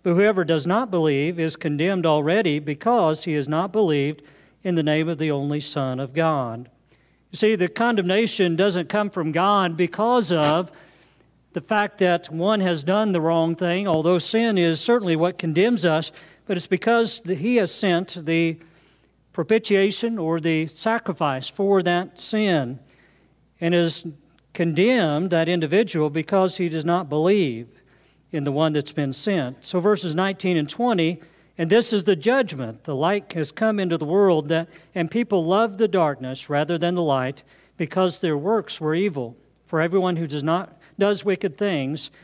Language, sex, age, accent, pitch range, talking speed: English, male, 50-69, American, 150-190 Hz, 165 wpm